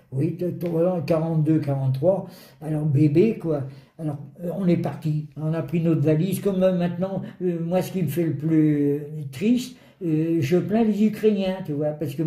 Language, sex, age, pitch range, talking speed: French, male, 60-79, 155-200 Hz, 170 wpm